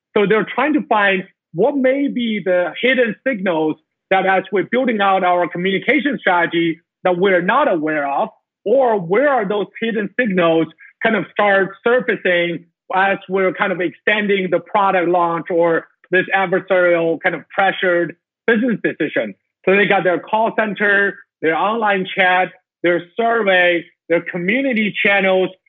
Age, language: 50-69, English